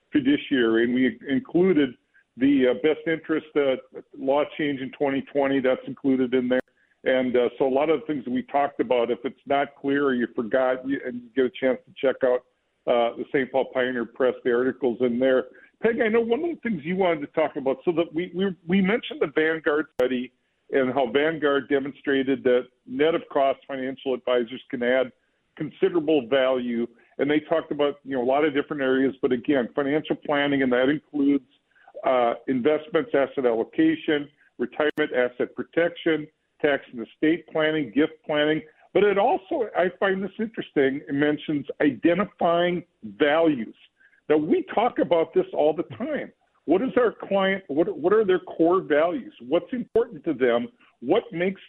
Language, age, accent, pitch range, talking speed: English, 50-69, American, 130-170 Hz, 180 wpm